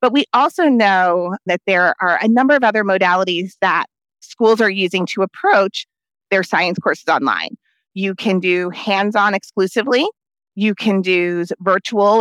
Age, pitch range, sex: 30-49, 185-245 Hz, female